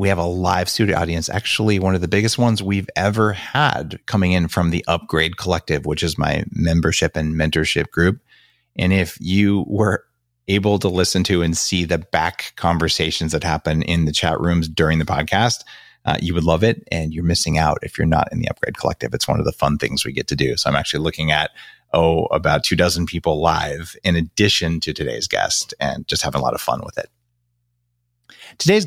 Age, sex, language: 30-49, male, English